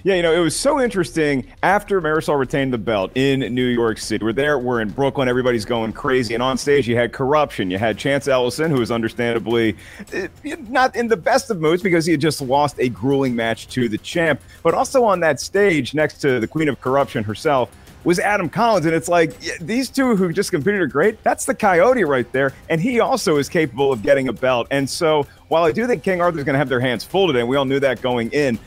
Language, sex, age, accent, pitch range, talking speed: English, male, 40-59, American, 125-165 Hz, 245 wpm